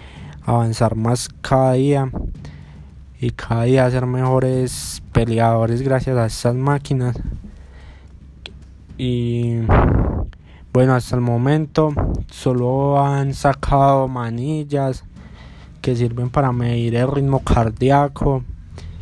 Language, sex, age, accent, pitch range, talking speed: Spanish, male, 20-39, Colombian, 115-135 Hz, 95 wpm